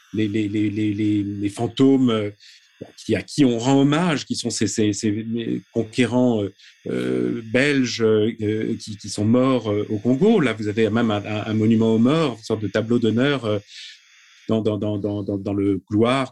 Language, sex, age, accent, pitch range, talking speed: French, male, 40-59, French, 110-130 Hz, 175 wpm